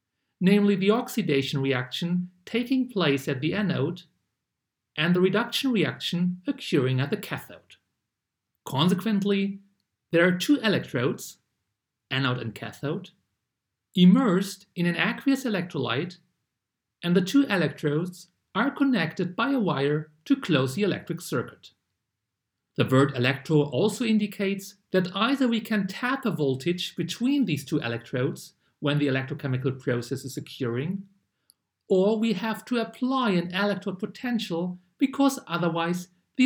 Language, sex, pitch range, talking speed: English, male, 145-215 Hz, 125 wpm